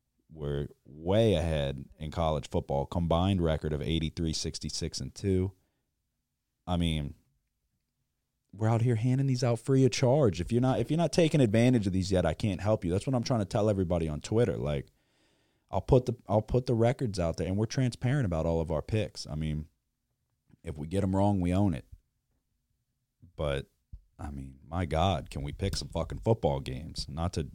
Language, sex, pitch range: English, male, 80-115 Hz